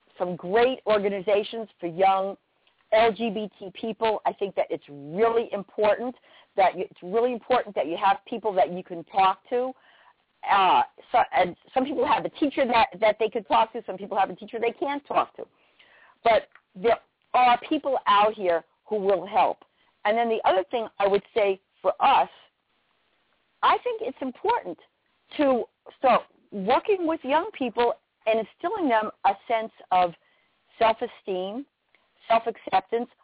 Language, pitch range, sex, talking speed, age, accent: English, 200-275 Hz, female, 160 wpm, 50-69, American